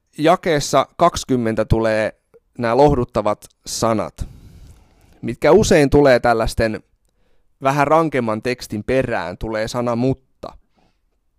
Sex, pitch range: male, 110-140 Hz